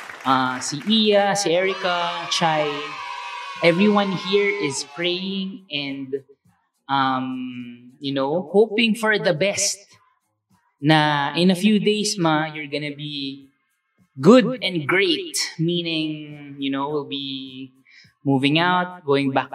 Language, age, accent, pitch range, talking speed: Filipino, 20-39, native, 130-175 Hz, 120 wpm